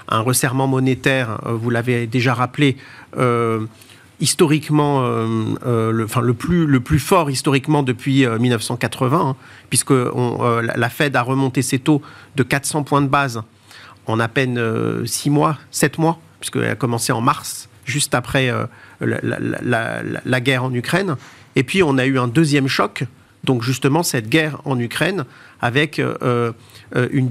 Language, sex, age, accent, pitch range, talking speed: French, male, 50-69, French, 120-150 Hz, 165 wpm